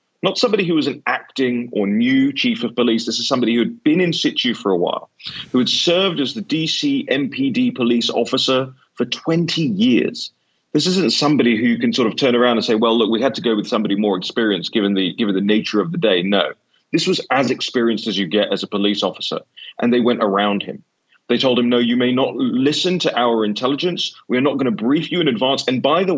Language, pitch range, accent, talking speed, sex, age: English, 115-170 Hz, British, 235 wpm, male, 30-49